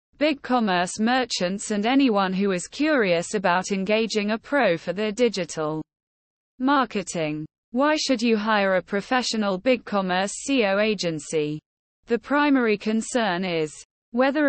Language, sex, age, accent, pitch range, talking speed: English, female, 20-39, British, 180-250 Hz, 130 wpm